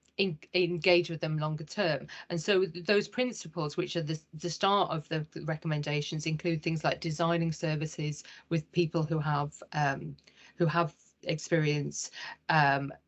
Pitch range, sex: 160-190 Hz, female